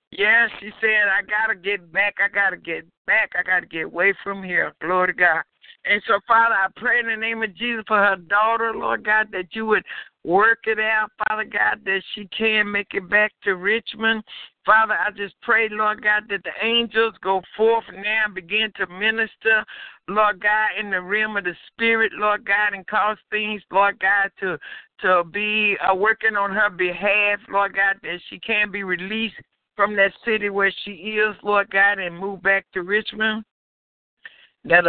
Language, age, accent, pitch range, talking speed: English, 60-79, American, 190-215 Hz, 195 wpm